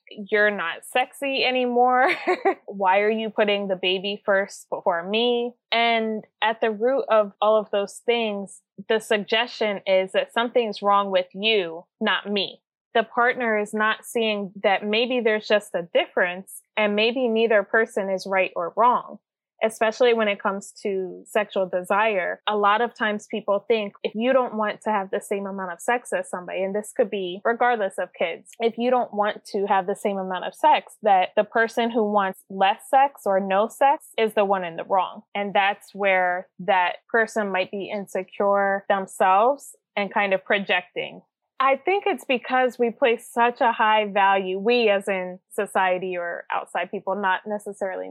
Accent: American